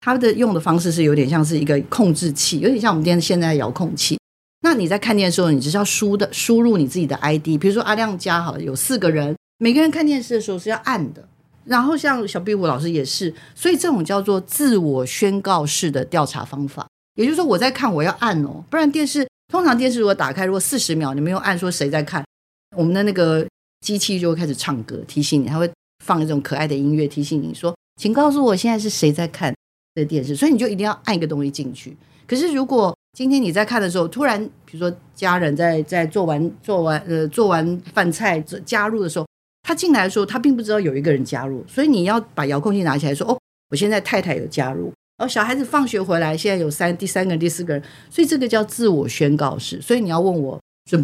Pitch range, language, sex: 150-220 Hz, Chinese, female